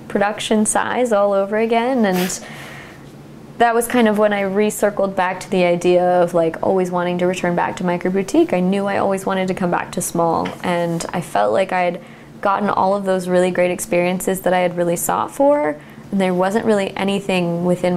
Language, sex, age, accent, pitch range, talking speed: English, female, 20-39, American, 180-205 Hz, 205 wpm